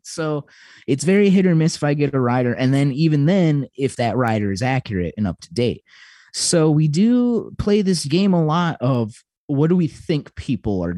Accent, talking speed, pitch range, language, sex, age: American, 215 wpm, 95-140 Hz, English, male, 20-39